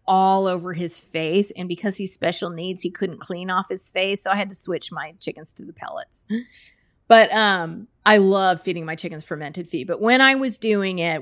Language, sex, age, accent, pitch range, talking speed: English, female, 30-49, American, 185-225 Hz, 215 wpm